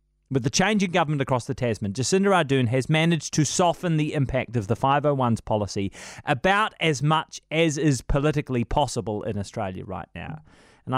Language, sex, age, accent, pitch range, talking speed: English, male, 30-49, Australian, 130-185 Hz, 175 wpm